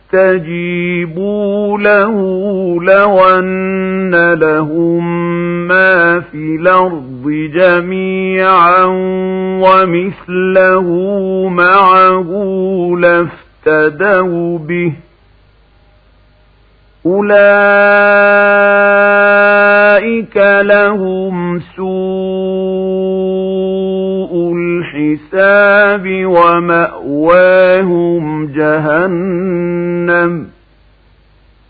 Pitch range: 165-190 Hz